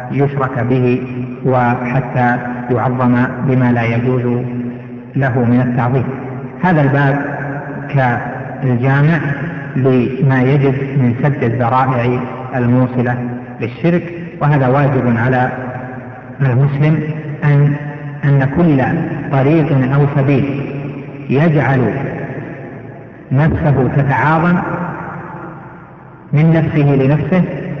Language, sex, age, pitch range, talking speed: Arabic, male, 50-69, 130-155 Hz, 80 wpm